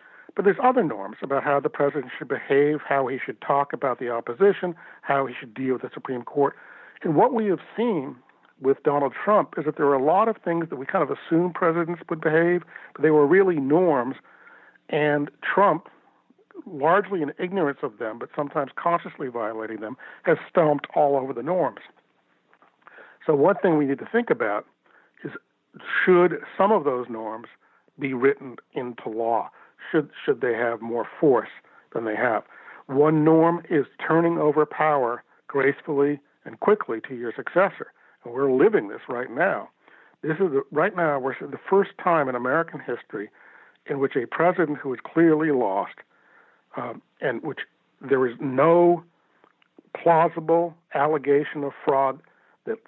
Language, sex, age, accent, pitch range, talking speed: English, male, 60-79, American, 135-170 Hz, 165 wpm